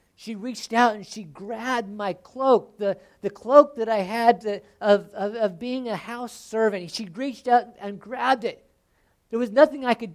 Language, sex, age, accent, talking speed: English, male, 50-69, American, 190 wpm